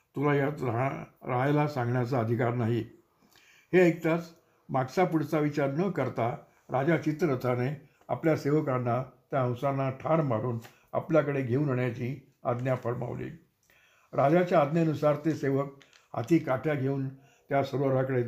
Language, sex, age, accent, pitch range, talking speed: Marathi, male, 60-79, native, 125-150 Hz, 120 wpm